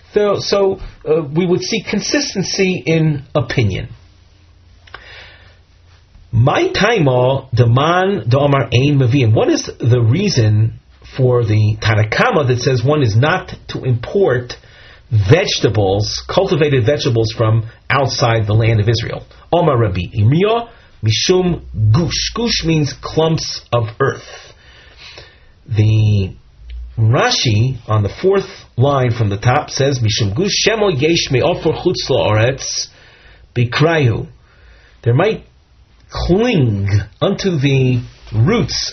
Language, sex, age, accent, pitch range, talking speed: English, male, 40-59, American, 110-150 Hz, 90 wpm